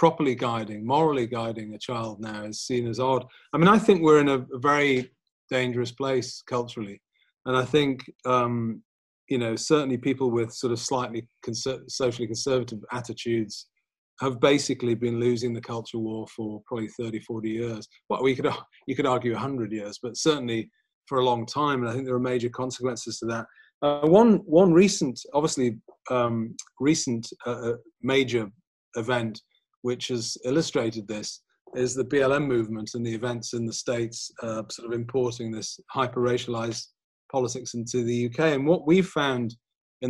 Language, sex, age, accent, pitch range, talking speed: English, male, 30-49, British, 115-135 Hz, 170 wpm